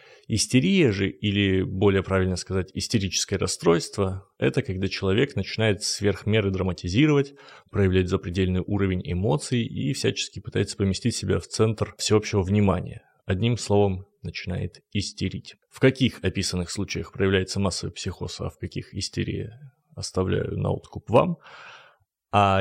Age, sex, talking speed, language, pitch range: 20-39, male, 125 wpm, Russian, 95-125 Hz